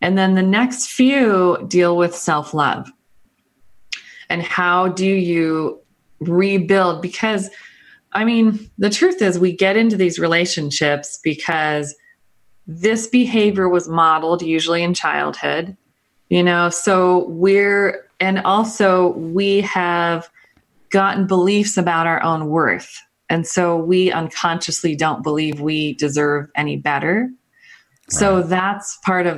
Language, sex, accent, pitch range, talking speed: English, female, American, 165-190 Hz, 125 wpm